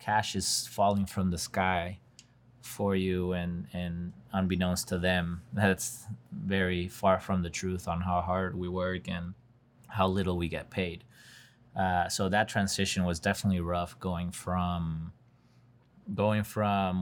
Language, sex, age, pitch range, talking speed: English, male, 20-39, 90-105 Hz, 140 wpm